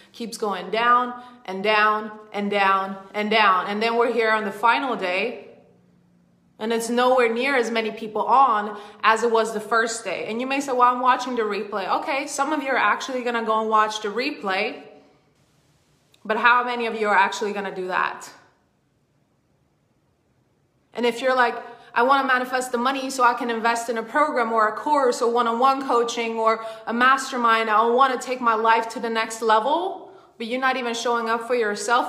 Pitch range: 200-245 Hz